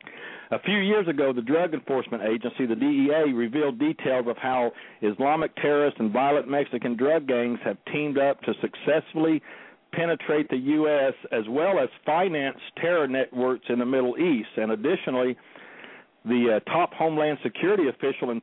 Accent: American